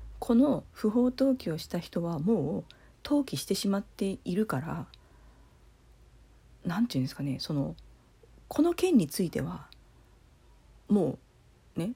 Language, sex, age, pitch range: Japanese, female, 40-59, 155-260 Hz